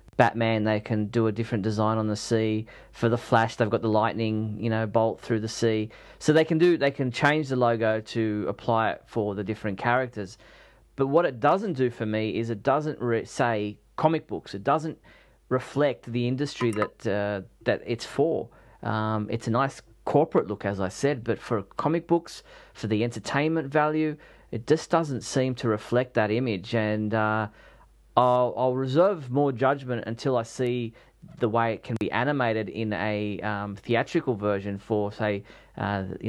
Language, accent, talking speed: English, Australian, 185 wpm